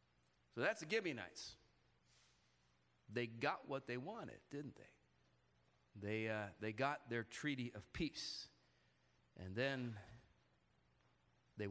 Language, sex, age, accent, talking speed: English, male, 40-59, American, 115 wpm